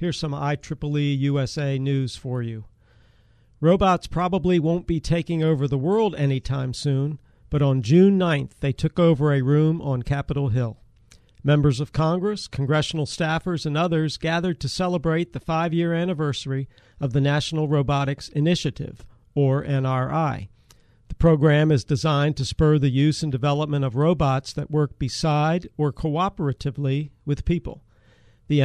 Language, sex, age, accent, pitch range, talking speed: English, male, 50-69, American, 135-160 Hz, 145 wpm